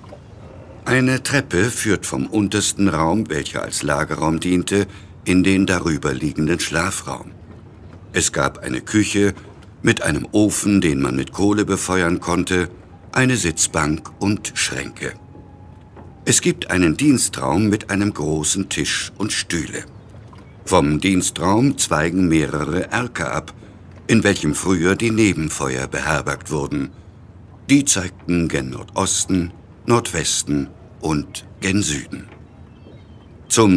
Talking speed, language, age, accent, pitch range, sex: 115 wpm, English, 60-79, German, 80-105 Hz, male